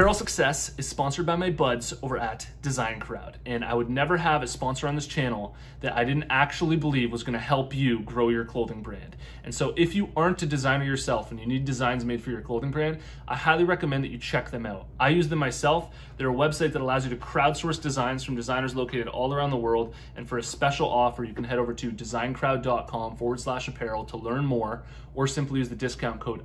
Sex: male